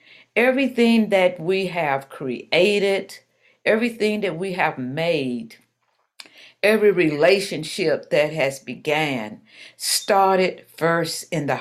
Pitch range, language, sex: 155-210 Hz, English, female